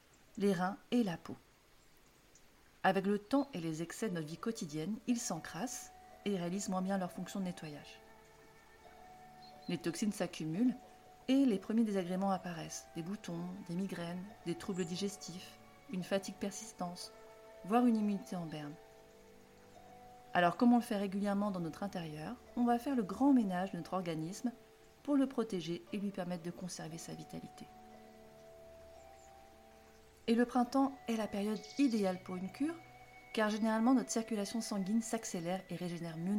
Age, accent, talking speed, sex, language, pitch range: 40-59, French, 155 wpm, female, French, 165-225 Hz